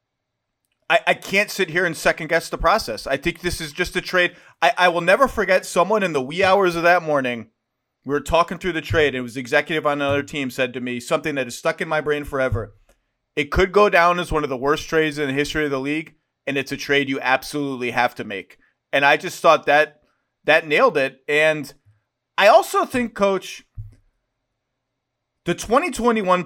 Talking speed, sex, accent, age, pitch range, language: 215 wpm, male, American, 30-49, 125-165 Hz, English